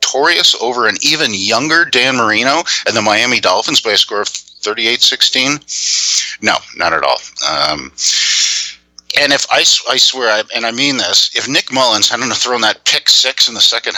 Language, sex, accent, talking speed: English, male, American, 185 wpm